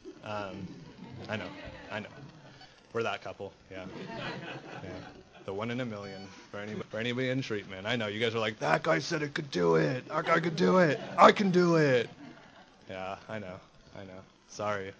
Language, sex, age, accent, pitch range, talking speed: English, male, 20-39, American, 100-125 Hz, 190 wpm